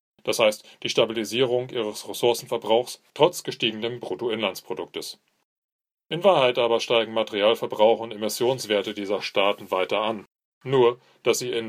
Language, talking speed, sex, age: English, 125 wpm, male, 30-49